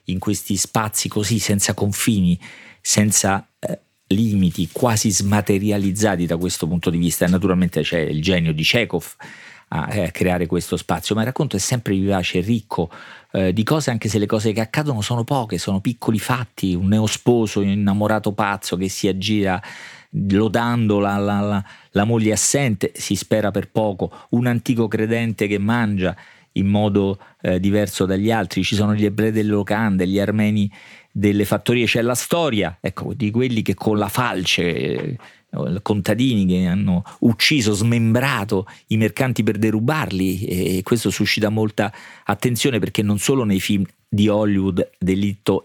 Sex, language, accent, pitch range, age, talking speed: male, Italian, native, 95-110 Hz, 40-59, 160 wpm